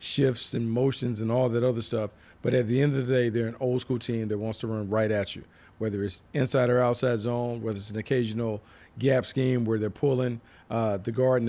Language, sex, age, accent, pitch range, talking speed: English, male, 40-59, American, 110-125 Hz, 240 wpm